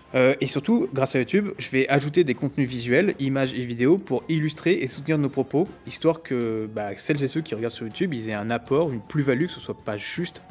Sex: male